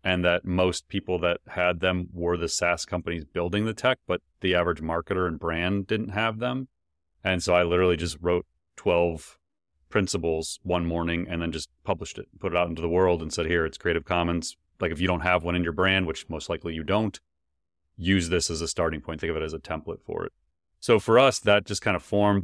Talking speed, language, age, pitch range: 230 wpm, English, 30-49, 85-100 Hz